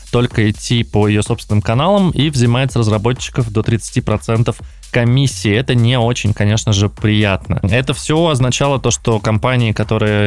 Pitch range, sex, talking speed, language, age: 105-125 Hz, male, 150 wpm, Russian, 20-39